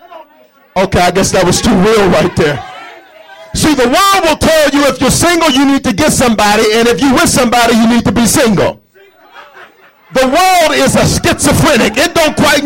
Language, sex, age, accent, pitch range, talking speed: English, male, 50-69, American, 240-330 Hz, 195 wpm